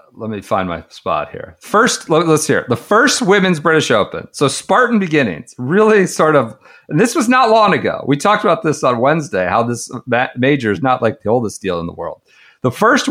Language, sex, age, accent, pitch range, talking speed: English, male, 50-69, American, 130-205 Hz, 215 wpm